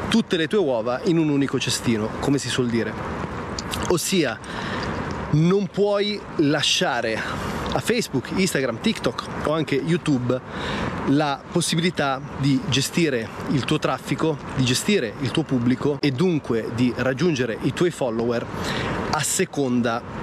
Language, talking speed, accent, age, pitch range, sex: Italian, 130 wpm, native, 30-49, 125-160 Hz, male